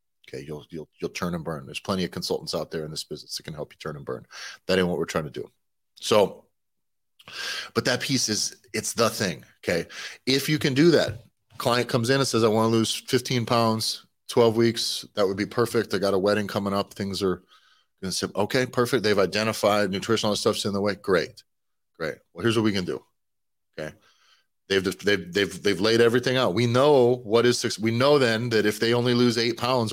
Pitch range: 100-120 Hz